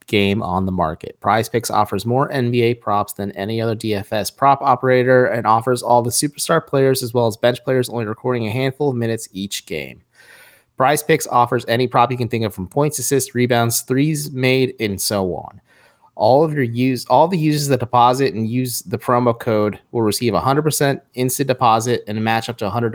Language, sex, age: English, male, 30-49